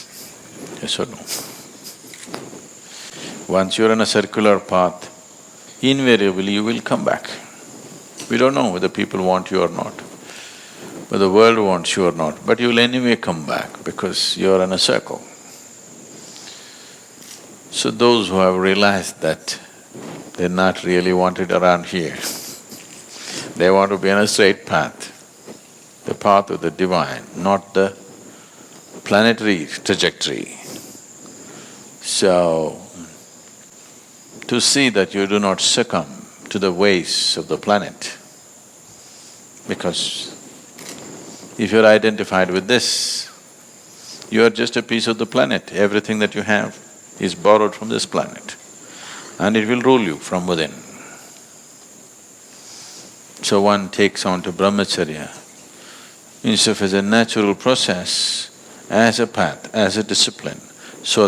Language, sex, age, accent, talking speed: Portuguese, male, 60-79, Indian, 130 wpm